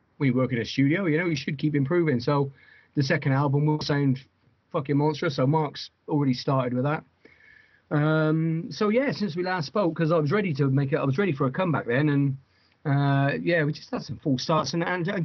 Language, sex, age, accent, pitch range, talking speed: English, male, 30-49, British, 130-155 Hz, 230 wpm